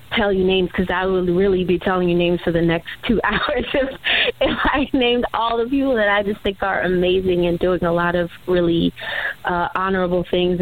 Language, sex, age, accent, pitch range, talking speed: English, female, 20-39, American, 170-190 Hz, 215 wpm